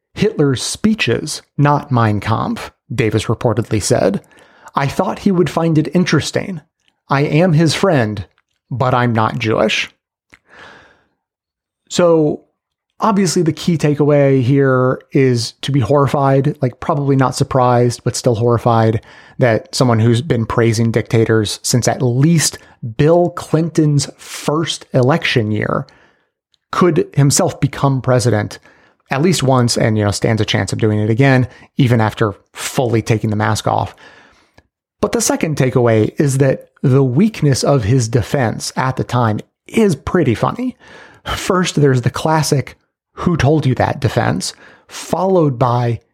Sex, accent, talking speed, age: male, American, 140 wpm, 30-49